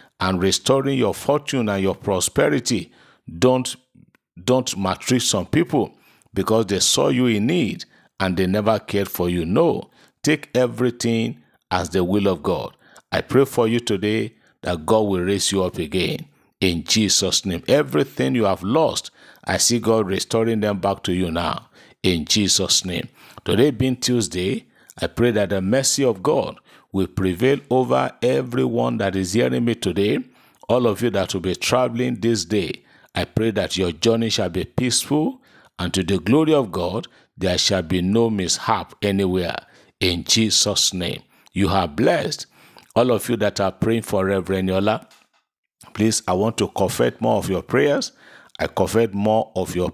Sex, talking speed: male, 170 wpm